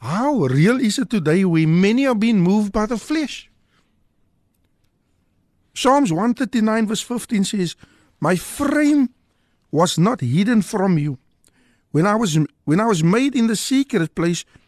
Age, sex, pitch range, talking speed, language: 60-79, male, 170-235 Hz, 145 wpm, Dutch